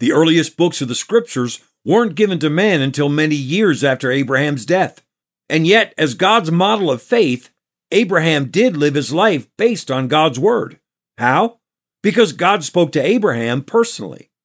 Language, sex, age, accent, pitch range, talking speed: English, male, 50-69, American, 135-200 Hz, 160 wpm